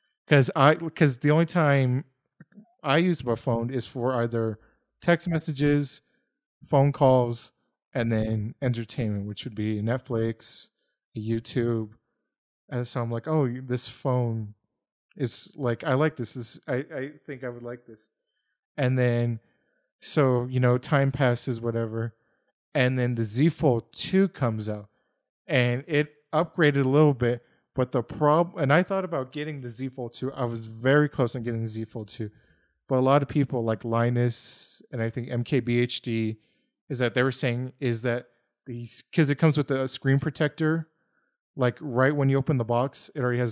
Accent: American